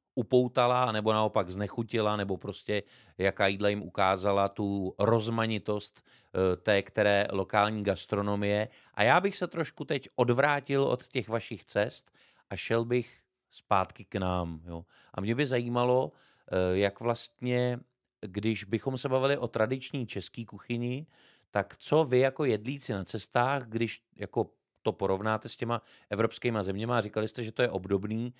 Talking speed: 145 wpm